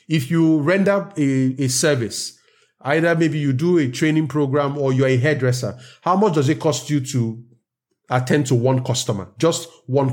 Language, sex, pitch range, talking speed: English, male, 125-160 Hz, 180 wpm